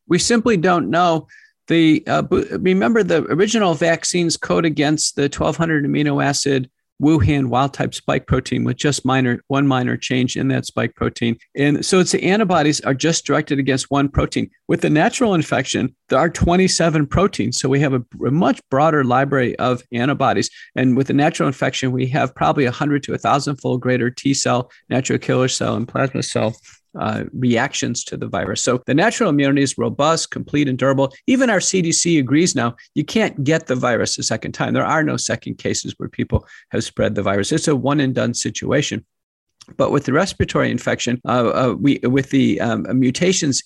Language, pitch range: English, 130-165 Hz